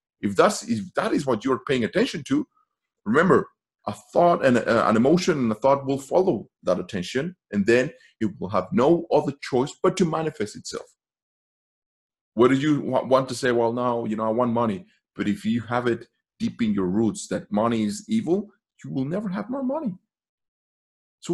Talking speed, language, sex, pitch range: 190 wpm, English, male, 125-195 Hz